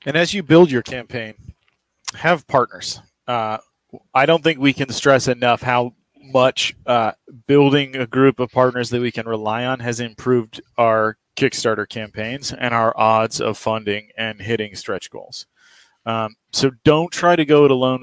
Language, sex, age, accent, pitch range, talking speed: English, male, 30-49, American, 110-135 Hz, 170 wpm